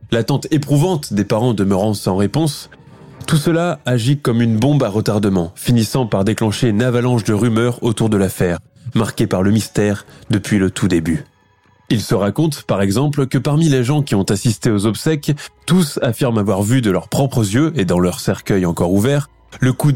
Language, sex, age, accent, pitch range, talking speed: French, male, 20-39, French, 105-135 Hz, 190 wpm